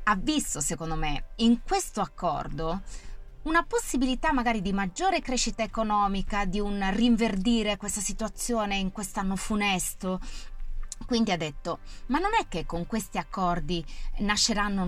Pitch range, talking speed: 155-210 Hz, 135 wpm